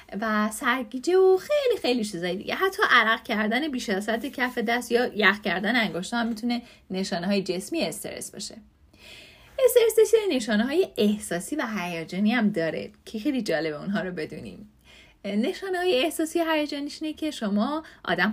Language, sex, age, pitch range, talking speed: Persian, female, 30-49, 190-295 Hz, 155 wpm